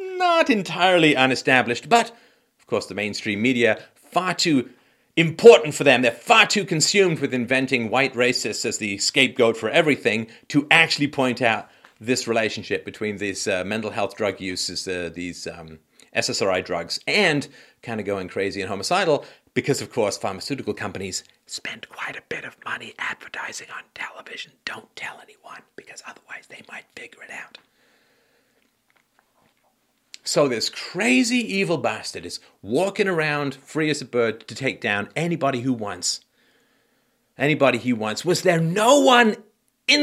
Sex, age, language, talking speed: male, 50-69, English, 155 wpm